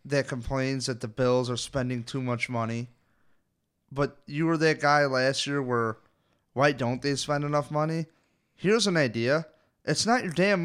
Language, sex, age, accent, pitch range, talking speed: English, male, 30-49, American, 135-180 Hz, 175 wpm